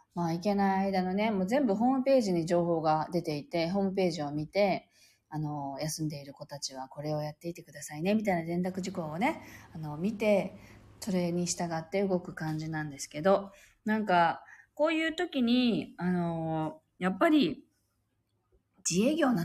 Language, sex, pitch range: Japanese, female, 155-245 Hz